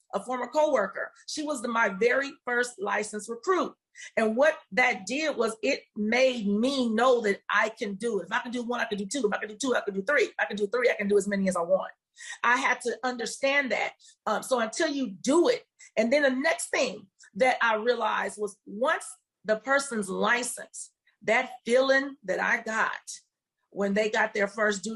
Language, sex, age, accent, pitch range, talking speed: English, female, 40-59, American, 215-280 Hz, 220 wpm